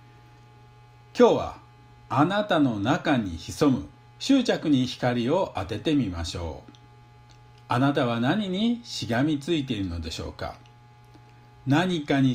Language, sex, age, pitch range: Japanese, male, 50-69, 120-155 Hz